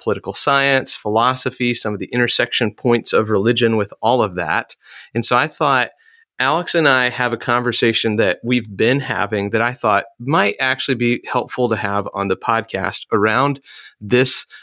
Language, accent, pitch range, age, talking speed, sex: English, American, 105-130 Hz, 30-49, 170 wpm, male